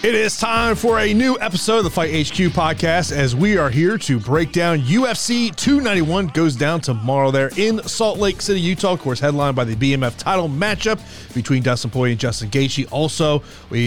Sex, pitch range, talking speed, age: male, 130-170 Hz, 200 wpm, 30-49